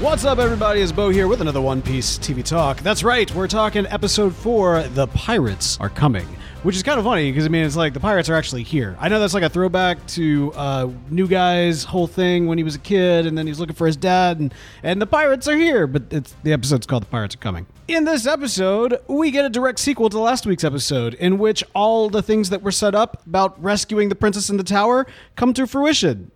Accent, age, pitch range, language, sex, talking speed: American, 30-49, 140-205 Hz, English, male, 245 wpm